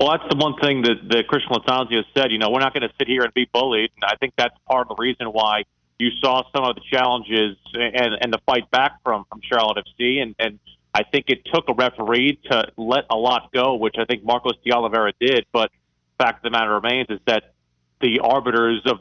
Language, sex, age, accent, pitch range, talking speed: English, male, 40-59, American, 110-130 Hz, 240 wpm